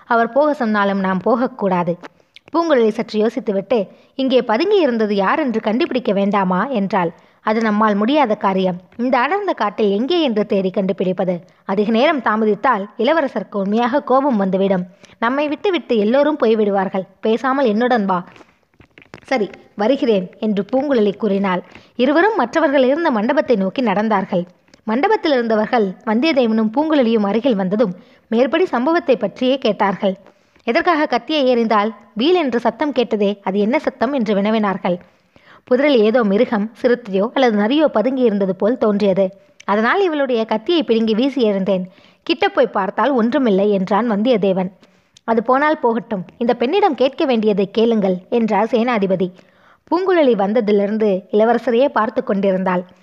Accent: native